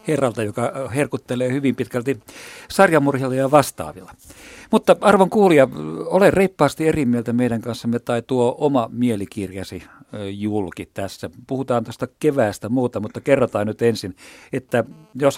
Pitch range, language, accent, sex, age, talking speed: 105-135 Hz, Finnish, native, male, 50-69, 130 wpm